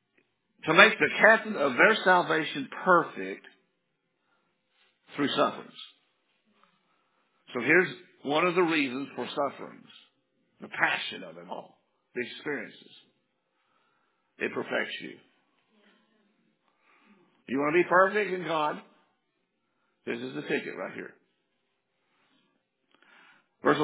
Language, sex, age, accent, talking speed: English, male, 60-79, American, 105 wpm